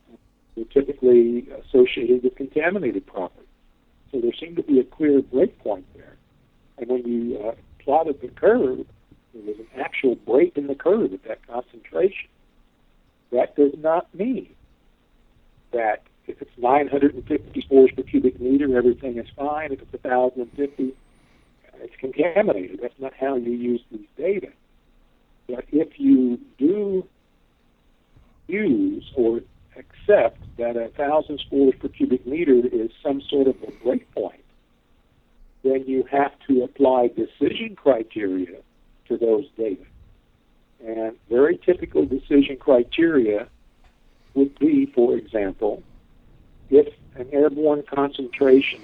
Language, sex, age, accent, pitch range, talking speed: English, male, 60-79, American, 120-150 Hz, 125 wpm